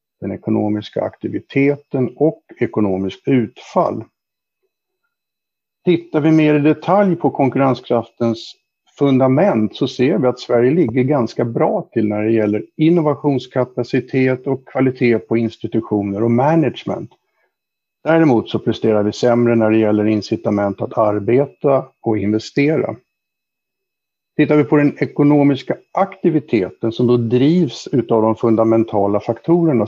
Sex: male